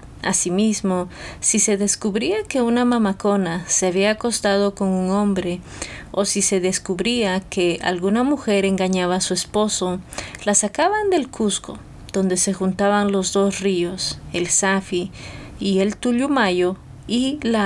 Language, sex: English, female